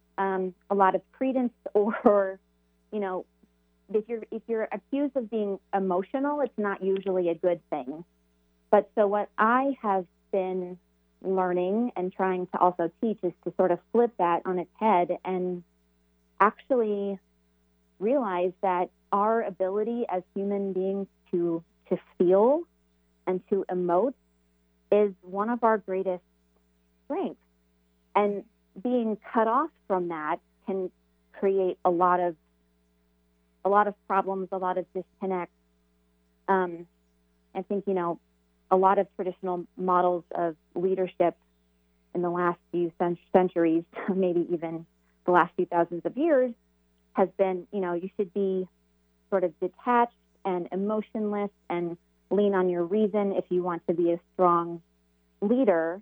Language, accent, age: English, American, 30-49